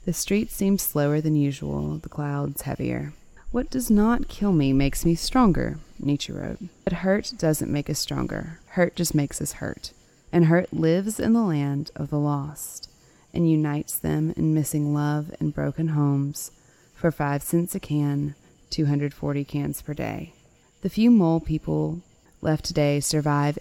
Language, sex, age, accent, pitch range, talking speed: English, female, 30-49, American, 145-170 Hz, 165 wpm